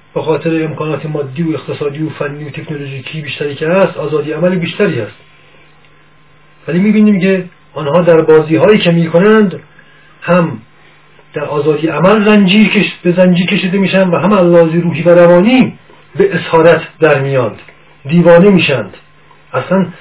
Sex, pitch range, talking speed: male, 145-175 Hz, 130 wpm